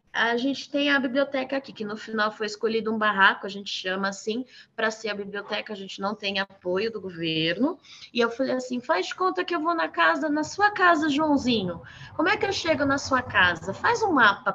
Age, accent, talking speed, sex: 20-39, Brazilian, 225 wpm, female